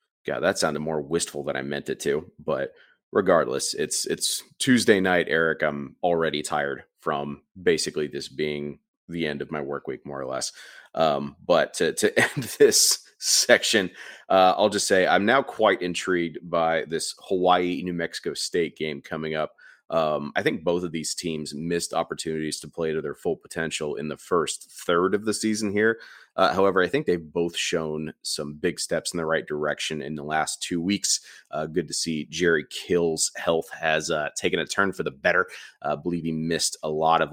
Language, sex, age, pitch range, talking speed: English, male, 30-49, 75-90 Hz, 195 wpm